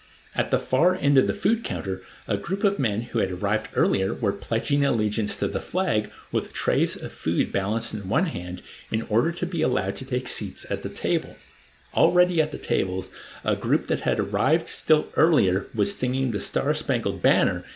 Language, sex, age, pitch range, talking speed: English, male, 50-69, 100-140 Hz, 195 wpm